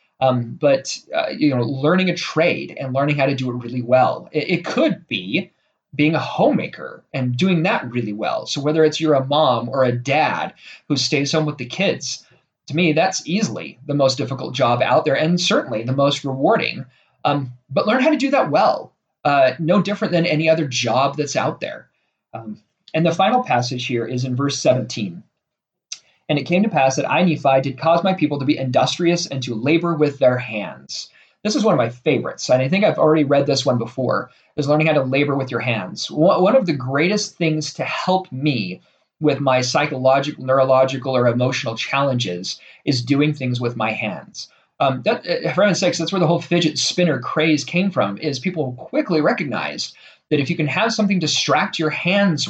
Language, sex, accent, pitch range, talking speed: English, male, American, 130-165 Hz, 205 wpm